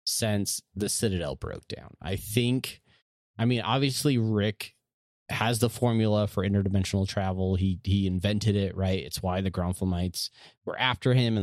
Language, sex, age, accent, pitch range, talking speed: English, male, 30-49, American, 95-115 Hz, 160 wpm